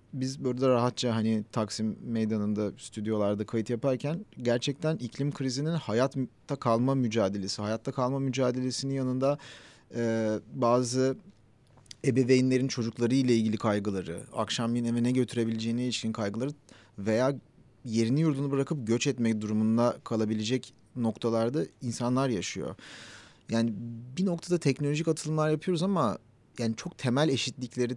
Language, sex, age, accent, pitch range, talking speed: Turkish, male, 40-59, native, 115-135 Hz, 120 wpm